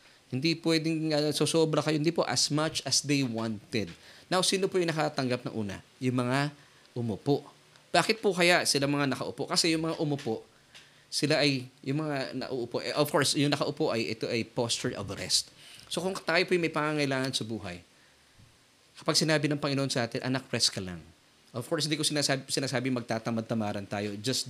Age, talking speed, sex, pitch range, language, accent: 20-39, 190 wpm, male, 115-155 Hz, Filipino, native